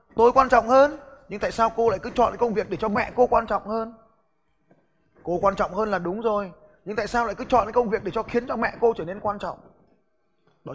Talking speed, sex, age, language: 255 wpm, male, 20-39, Vietnamese